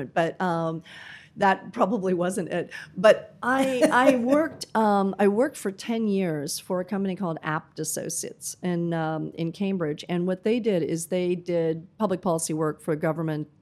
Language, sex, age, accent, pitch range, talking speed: English, female, 40-59, American, 165-195 Hz, 165 wpm